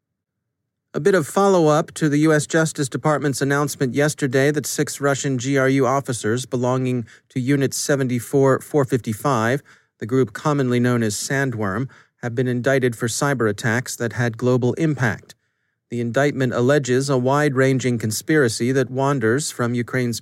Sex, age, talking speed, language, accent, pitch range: male, 40-59, 135 wpm, English, American, 120-145 Hz